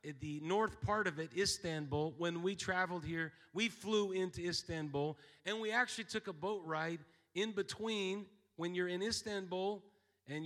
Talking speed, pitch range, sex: 160 wpm, 140-175 Hz, male